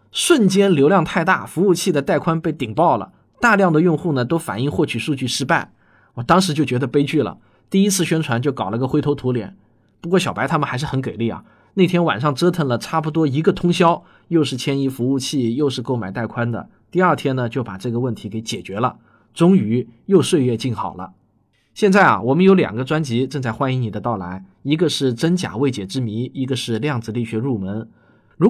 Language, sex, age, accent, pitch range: Chinese, male, 20-39, native, 120-175 Hz